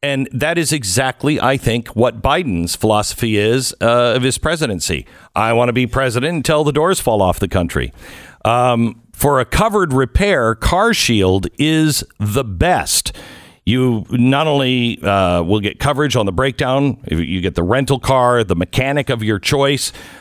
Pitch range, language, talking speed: 105-135 Hz, English, 165 wpm